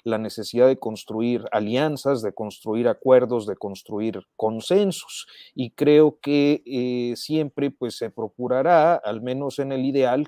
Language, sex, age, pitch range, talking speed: Spanish, male, 40-59, 115-145 Hz, 135 wpm